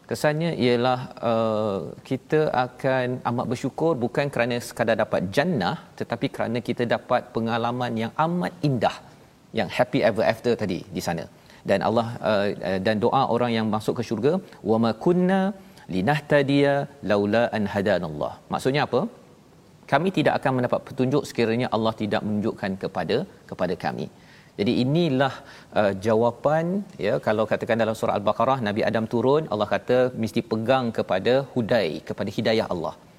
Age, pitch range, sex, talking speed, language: 40-59, 110-130 Hz, male, 145 wpm, Malayalam